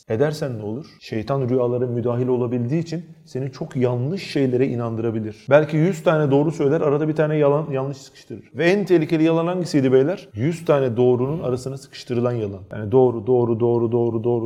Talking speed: 175 wpm